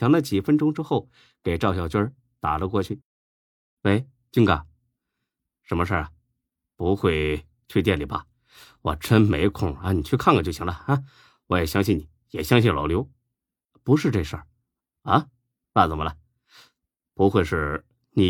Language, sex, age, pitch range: Chinese, male, 30-49, 80-120 Hz